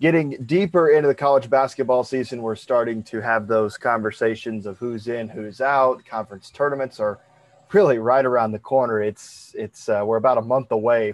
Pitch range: 110-135 Hz